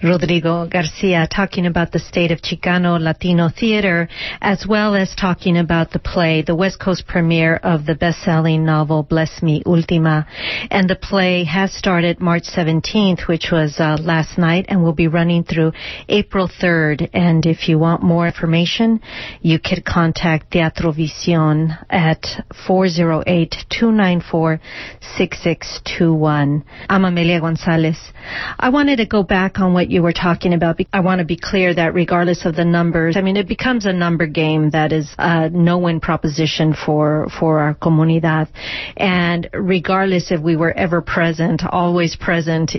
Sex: female